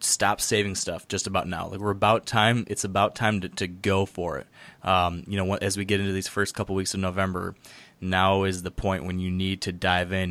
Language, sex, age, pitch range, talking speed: English, male, 20-39, 95-105 Hz, 245 wpm